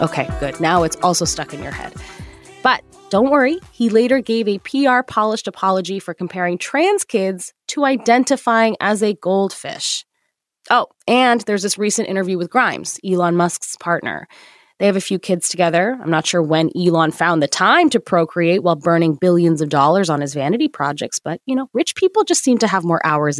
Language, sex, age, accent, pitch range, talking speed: English, female, 20-39, American, 170-245 Hz, 190 wpm